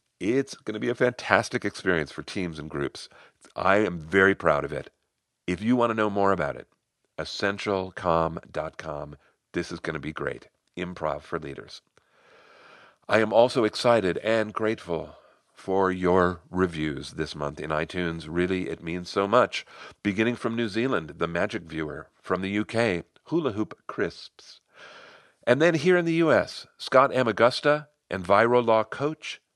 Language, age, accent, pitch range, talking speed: English, 50-69, American, 90-125 Hz, 155 wpm